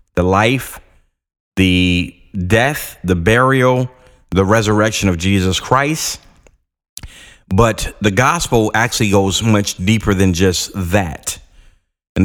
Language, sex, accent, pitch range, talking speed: English, male, American, 90-115 Hz, 105 wpm